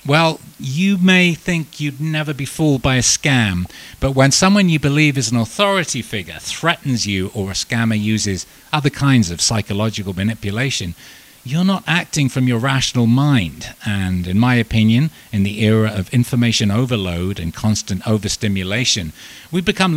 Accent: British